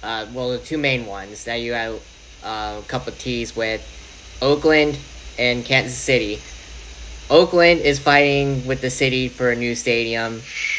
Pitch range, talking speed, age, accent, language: 115-140 Hz, 160 wpm, 10-29, American, English